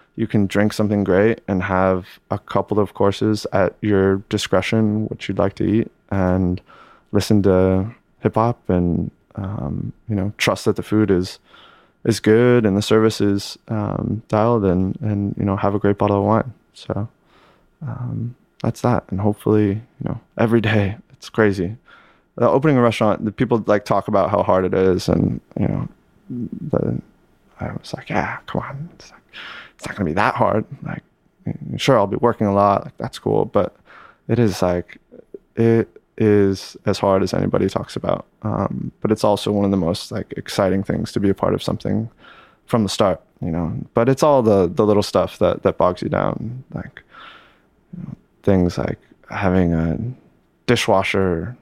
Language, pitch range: English, 95-110 Hz